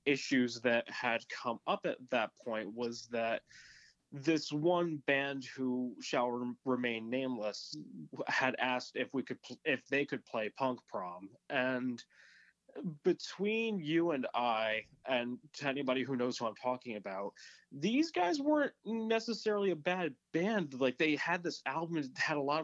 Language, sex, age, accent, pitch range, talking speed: English, male, 20-39, American, 120-160 Hz, 150 wpm